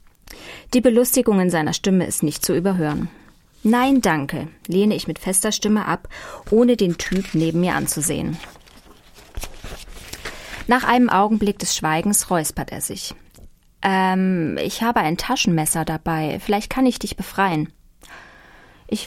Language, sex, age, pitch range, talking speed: German, female, 20-39, 160-205 Hz, 135 wpm